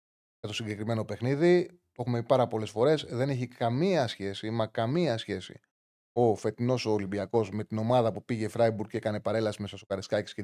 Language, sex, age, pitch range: Greek, male, 30-49, 110-140 Hz